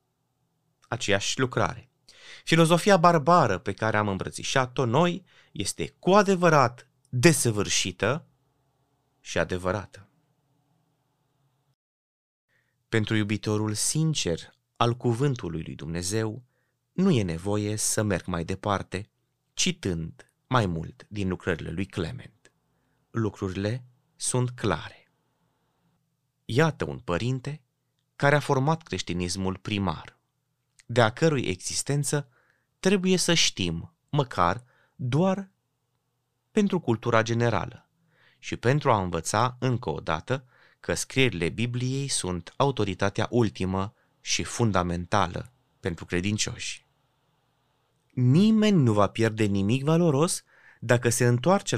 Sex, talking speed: male, 95 wpm